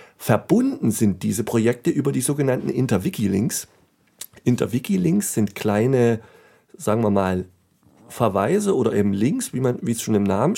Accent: German